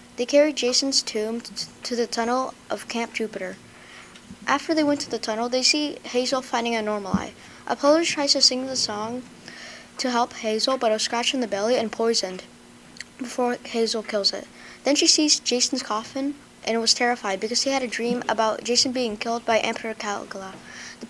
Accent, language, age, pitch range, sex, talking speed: American, English, 20-39, 215-255 Hz, female, 190 wpm